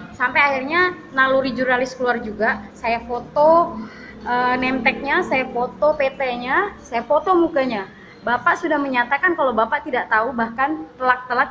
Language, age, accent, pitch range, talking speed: Indonesian, 20-39, native, 235-295 Hz, 135 wpm